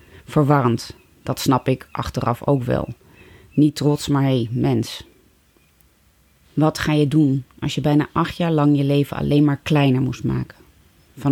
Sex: female